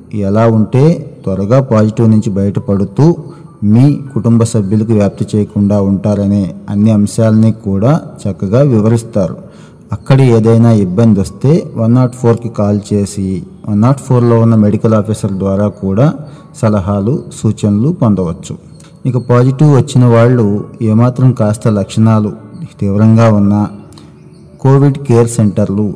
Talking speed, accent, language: 115 wpm, native, Telugu